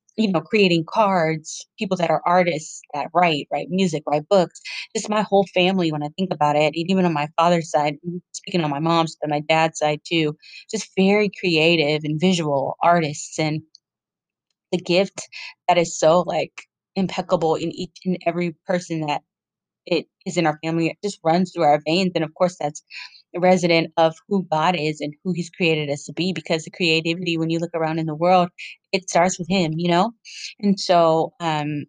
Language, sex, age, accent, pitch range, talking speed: English, female, 20-39, American, 155-180 Hz, 195 wpm